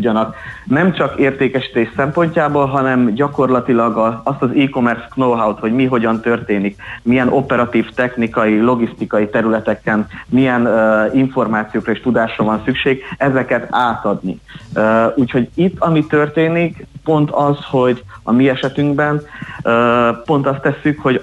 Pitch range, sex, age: 110-135 Hz, male, 30-49